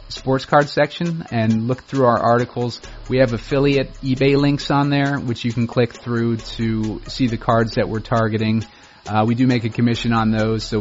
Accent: American